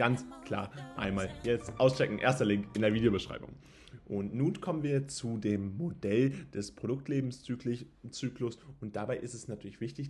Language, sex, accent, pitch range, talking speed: German, male, German, 110-150 Hz, 150 wpm